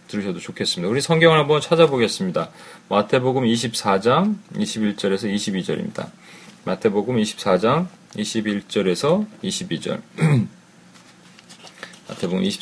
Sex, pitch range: male, 105-155 Hz